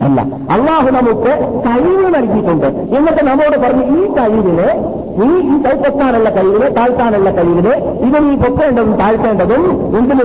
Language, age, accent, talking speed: Malayalam, 50-69, native, 115 wpm